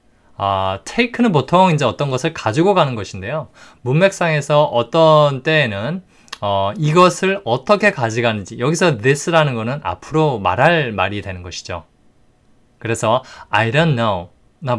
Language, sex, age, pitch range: Korean, male, 20-39, 105-155 Hz